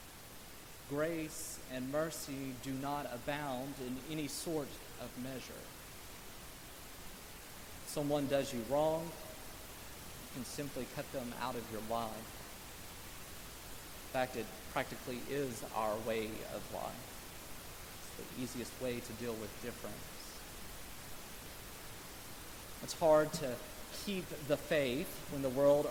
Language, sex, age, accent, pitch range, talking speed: English, male, 40-59, American, 120-160 Hz, 120 wpm